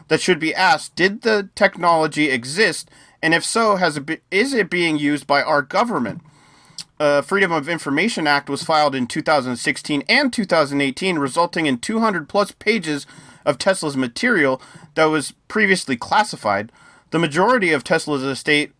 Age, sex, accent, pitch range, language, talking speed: 30-49, male, American, 145-190 Hz, English, 155 wpm